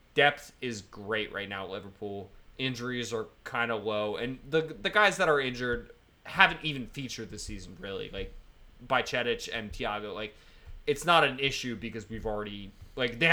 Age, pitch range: 20-39, 105-130 Hz